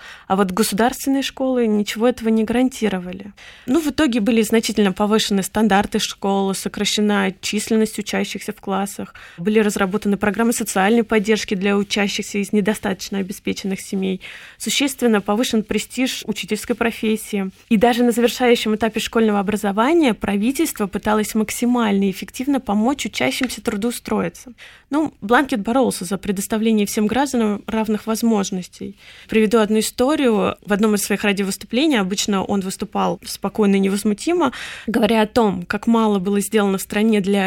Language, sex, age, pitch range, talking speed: Russian, female, 20-39, 200-230 Hz, 135 wpm